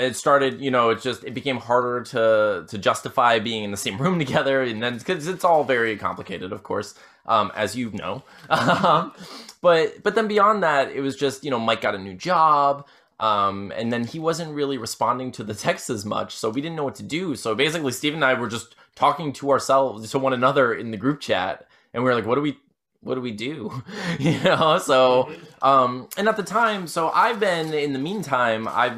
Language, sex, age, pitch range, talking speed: English, male, 20-39, 110-140 Hz, 225 wpm